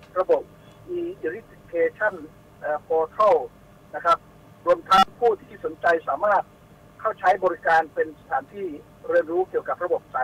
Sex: male